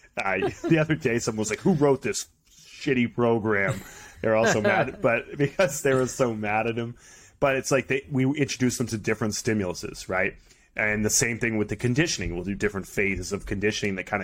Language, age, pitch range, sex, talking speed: English, 30-49, 95-115 Hz, male, 205 wpm